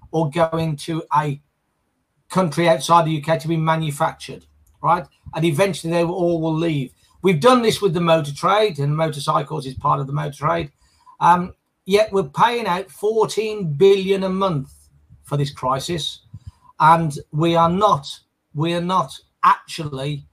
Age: 40-59